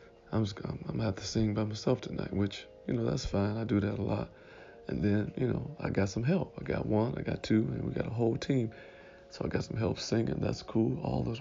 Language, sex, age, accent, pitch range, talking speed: English, male, 40-59, American, 95-115 Hz, 260 wpm